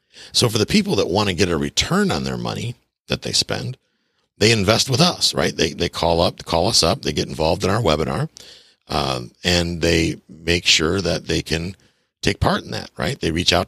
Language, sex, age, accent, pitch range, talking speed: English, male, 50-69, American, 75-100 Hz, 225 wpm